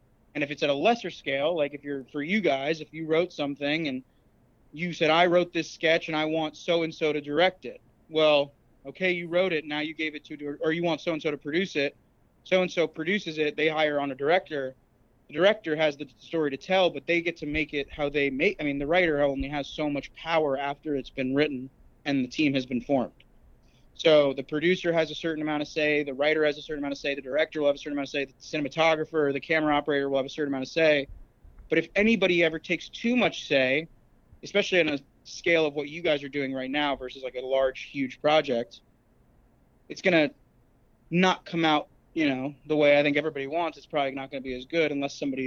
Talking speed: 235 wpm